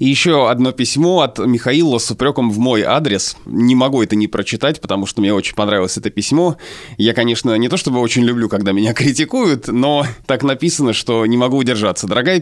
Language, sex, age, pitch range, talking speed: Russian, male, 20-39, 110-145 Hz, 200 wpm